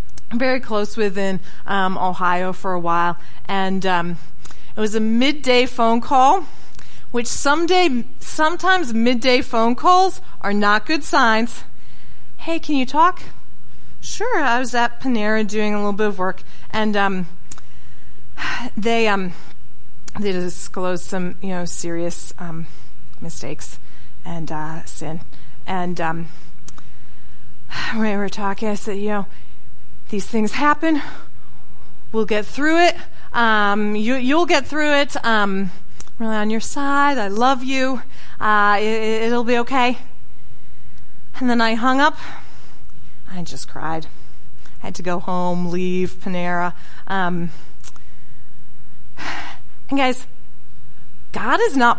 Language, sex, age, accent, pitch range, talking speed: English, female, 40-59, American, 185-255 Hz, 130 wpm